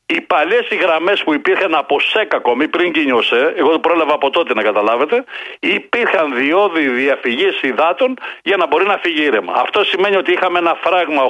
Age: 60-79